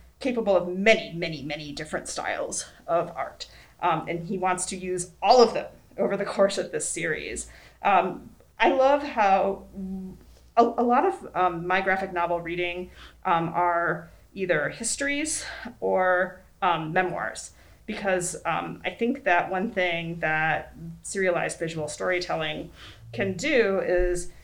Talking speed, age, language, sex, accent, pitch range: 140 wpm, 30-49, English, female, American, 165-195 Hz